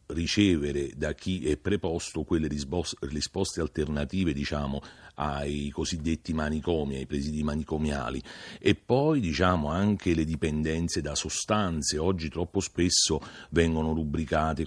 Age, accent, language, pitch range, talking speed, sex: 40-59, native, Italian, 75-90 Hz, 115 wpm, male